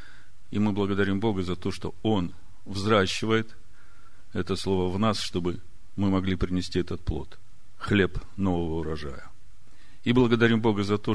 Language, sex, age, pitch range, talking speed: Russian, male, 50-69, 90-105 Hz, 145 wpm